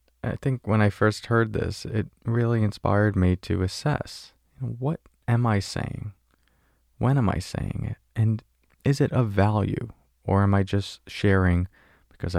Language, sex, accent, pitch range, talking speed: English, male, American, 90-120 Hz, 160 wpm